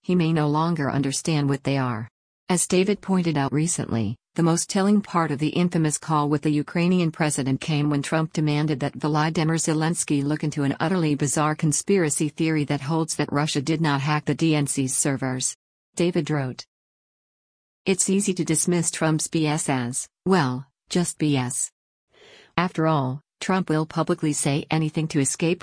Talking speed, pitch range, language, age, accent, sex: 165 wpm, 140-170 Hz, English, 50-69, American, female